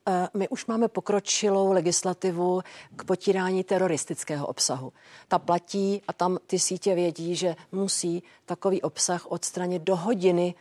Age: 50-69